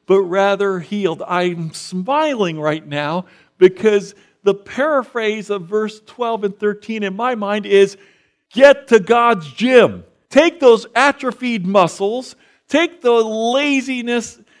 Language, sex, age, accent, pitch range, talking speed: English, male, 50-69, American, 125-210 Hz, 125 wpm